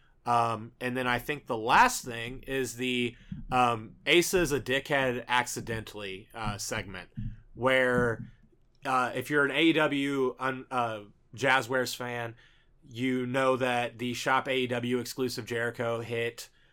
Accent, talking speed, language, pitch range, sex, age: American, 130 wpm, English, 120-145 Hz, male, 30-49